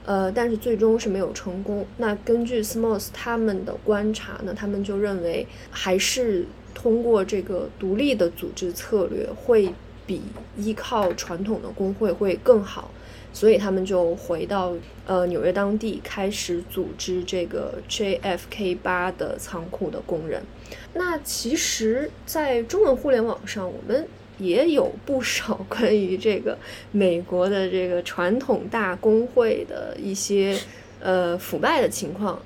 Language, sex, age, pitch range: Chinese, female, 20-39, 185-235 Hz